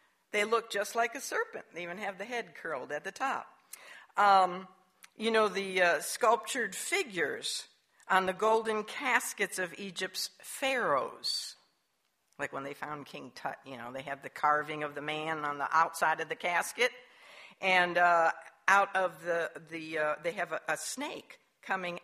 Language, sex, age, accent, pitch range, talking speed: English, female, 60-79, American, 170-230 Hz, 170 wpm